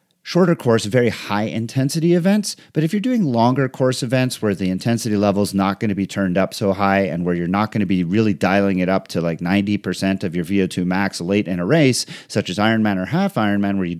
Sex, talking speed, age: male, 225 wpm, 40-59